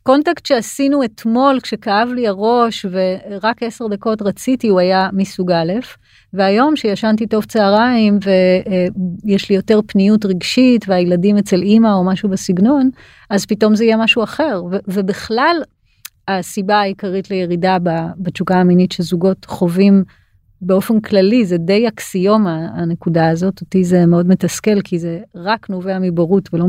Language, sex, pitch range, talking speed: Hebrew, female, 185-225 Hz, 135 wpm